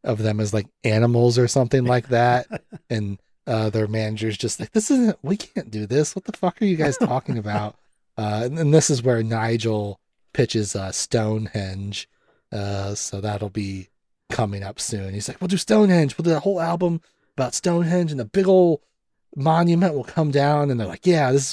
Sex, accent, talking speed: male, American, 200 wpm